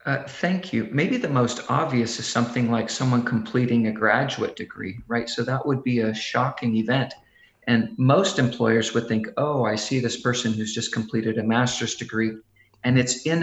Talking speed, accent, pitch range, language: 190 wpm, American, 110-125 Hz, English